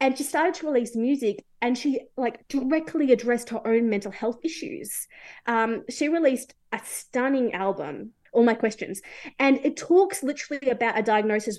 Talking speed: 165 wpm